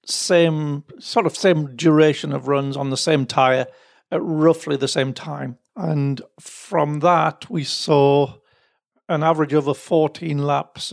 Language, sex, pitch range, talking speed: English, male, 140-165 Hz, 150 wpm